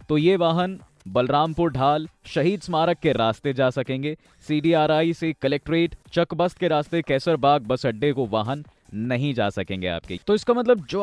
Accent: native